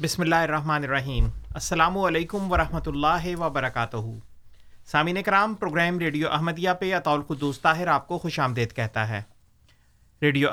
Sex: male